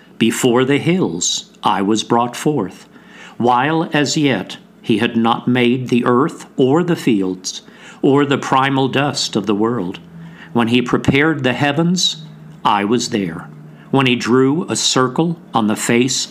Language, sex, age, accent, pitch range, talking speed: English, male, 50-69, American, 115-155 Hz, 155 wpm